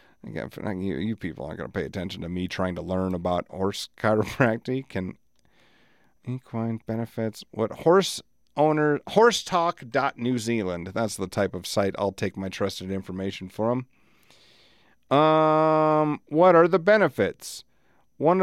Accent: American